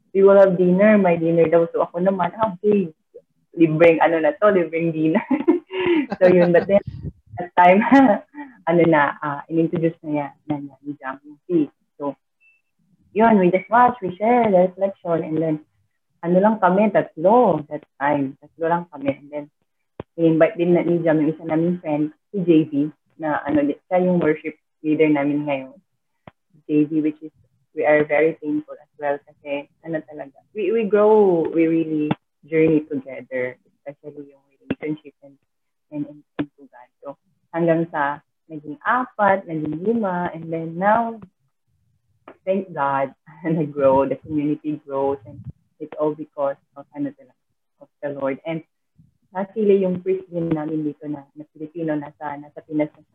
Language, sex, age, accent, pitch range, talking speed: Filipino, female, 30-49, native, 145-185 Hz, 160 wpm